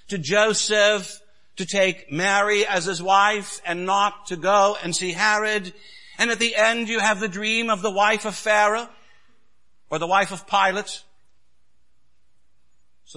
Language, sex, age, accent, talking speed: English, male, 60-79, American, 155 wpm